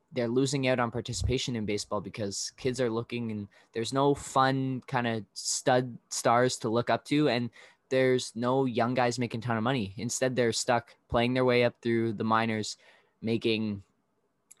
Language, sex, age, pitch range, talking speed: English, male, 10-29, 105-125 Hz, 185 wpm